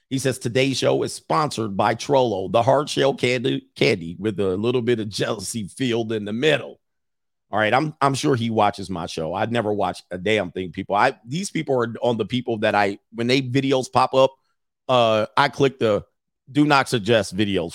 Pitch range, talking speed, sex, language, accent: 110-140 Hz, 205 wpm, male, English, American